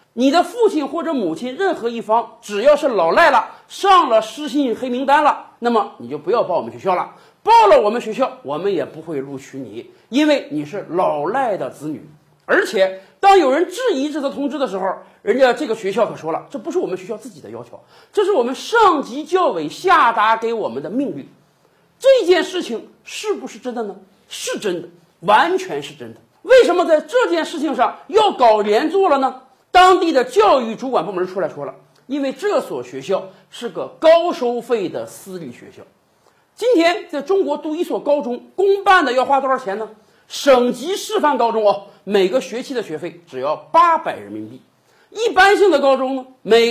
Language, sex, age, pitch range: Chinese, male, 50-69, 225-365 Hz